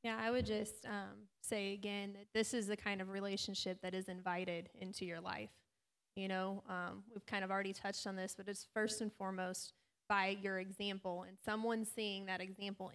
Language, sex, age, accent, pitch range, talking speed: English, female, 20-39, American, 195-220 Hz, 200 wpm